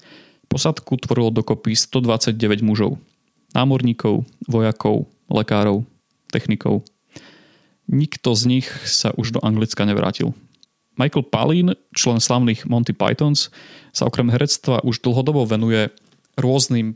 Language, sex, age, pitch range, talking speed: Slovak, male, 30-49, 110-130 Hz, 105 wpm